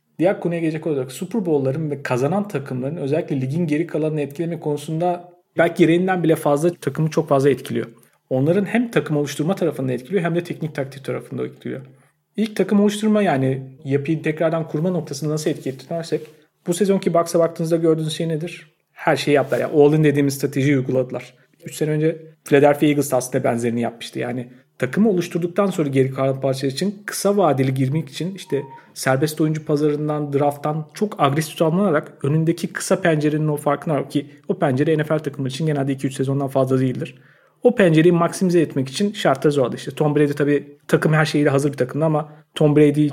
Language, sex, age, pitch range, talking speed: Turkish, male, 40-59, 140-165 Hz, 175 wpm